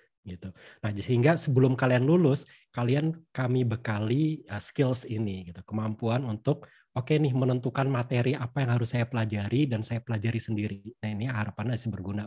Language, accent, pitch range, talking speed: Indonesian, native, 110-130 Hz, 170 wpm